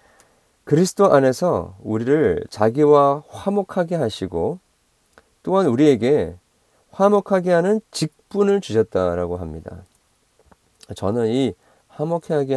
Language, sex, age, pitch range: Korean, male, 40-59, 90-145 Hz